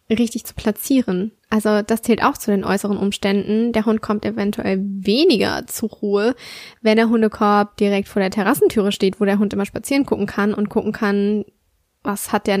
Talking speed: 185 wpm